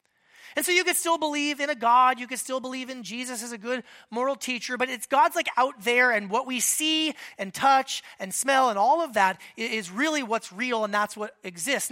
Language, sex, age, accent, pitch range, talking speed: English, male, 30-49, American, 210-280 Hz, 230 wpm